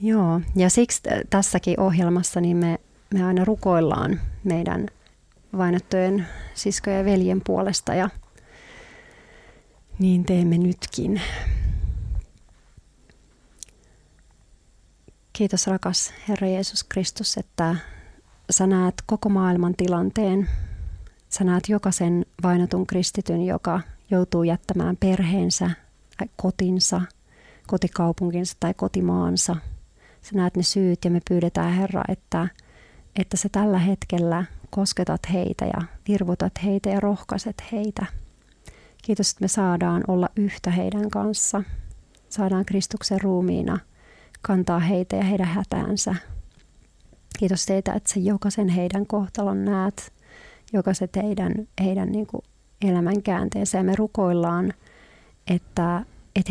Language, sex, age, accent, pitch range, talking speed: Finnish, female, 30-49, native, 175-200 Hz, 105 wpm